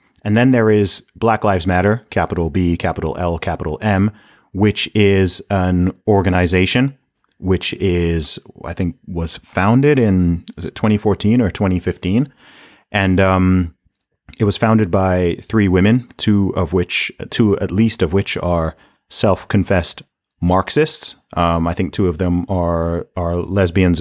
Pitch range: 85-105 Hz